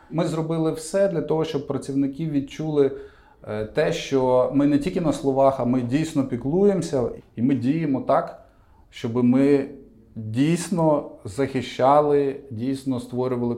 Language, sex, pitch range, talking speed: Ukrainian, male, 115-140 Hz, 130 wpm